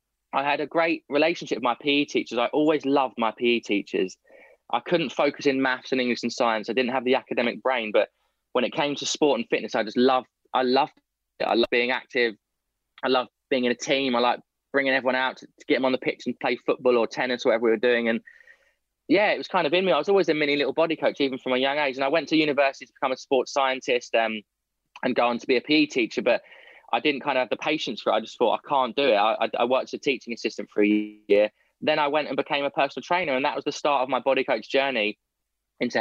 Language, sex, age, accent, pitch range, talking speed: English, male, 20-39, British, 125-150 Hz, 265 wpm